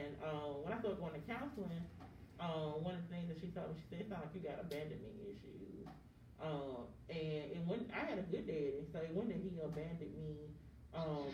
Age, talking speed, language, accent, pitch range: 30-49, 200 wpm, English, American, 145-180 Hz